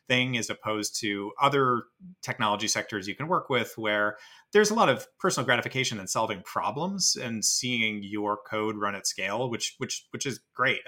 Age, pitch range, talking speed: 30-49, 105-135 Hz, 180 wpm